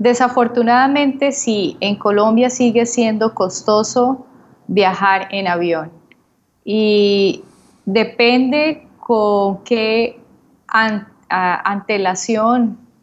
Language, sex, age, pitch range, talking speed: English, female, 20-39, 185-225 Hz, 70 wpm